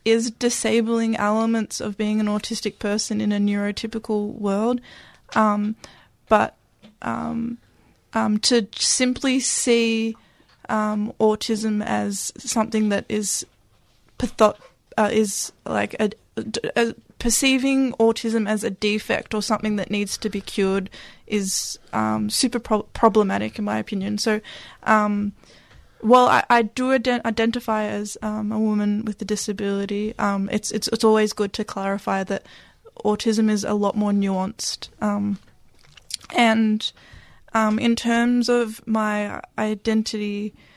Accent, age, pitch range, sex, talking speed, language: Australian, 20-39, 210-230 Hz, female, 130 wpm, English